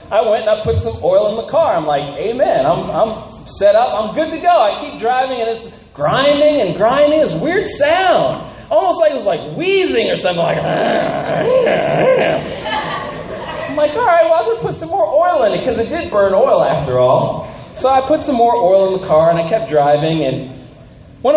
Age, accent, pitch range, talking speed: 30-49, American, 180-290 Hz, 215 wpm